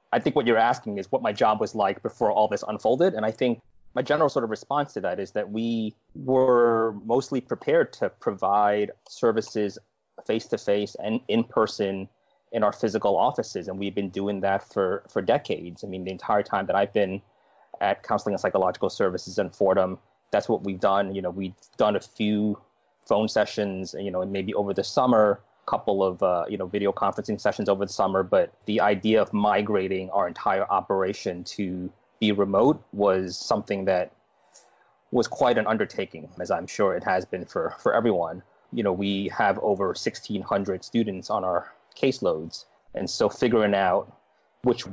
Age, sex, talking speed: 20-39, male, 185 wpm